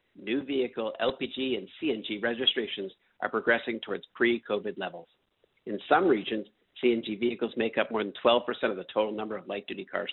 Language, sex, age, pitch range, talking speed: English, male, 50-69, 105-125 Hz, 170 wpm